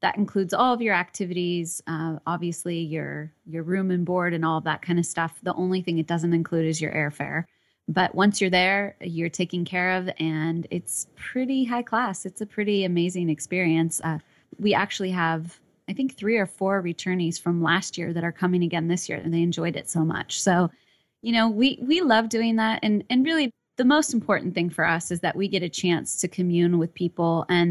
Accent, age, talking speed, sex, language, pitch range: American, 20-39, 215 wpm, female, English, 165-195 Hz